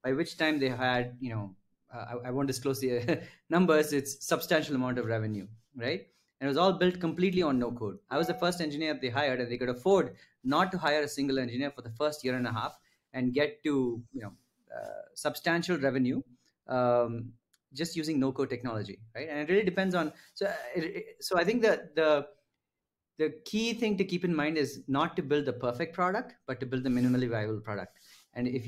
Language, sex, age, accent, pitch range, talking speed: English, male, 30-49, Indian, 125-165 Hz, 205 wpm